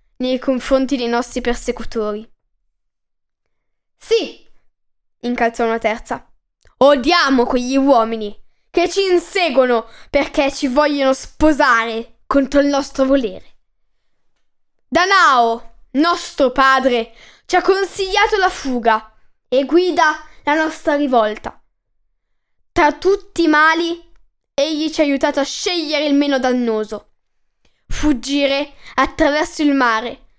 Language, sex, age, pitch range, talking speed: Italian, female, 10-29, 245-325 Hz, 105 wpm